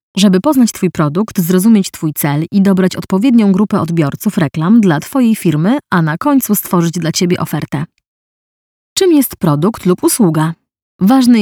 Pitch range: 170-210 Hz